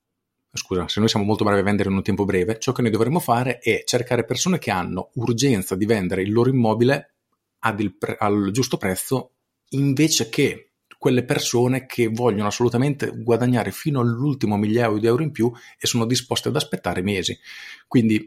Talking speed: 180 wpm